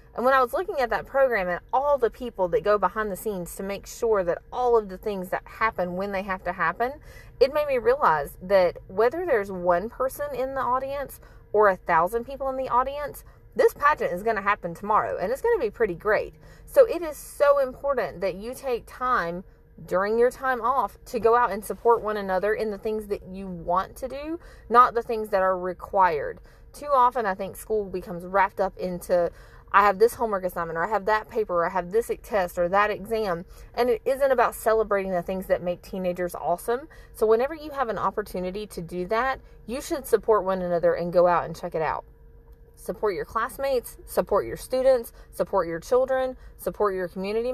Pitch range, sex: 185-255 Hz, female